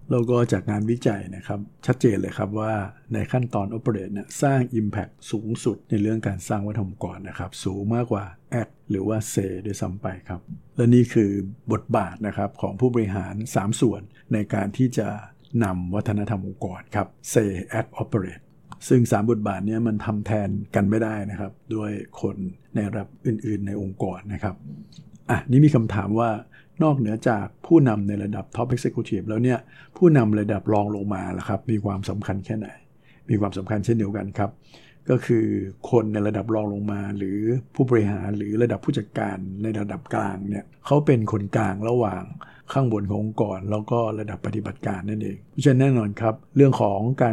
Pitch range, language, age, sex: 100-120 Hz, Thai, 60-79, male